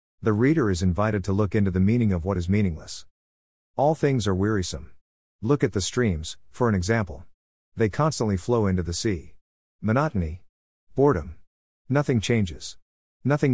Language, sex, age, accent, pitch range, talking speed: English, male, 50-69, American, 85-115 Hz, 155 wpm